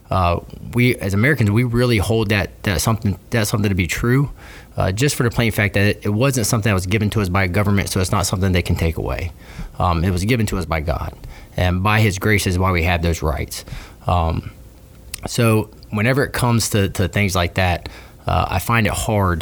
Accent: American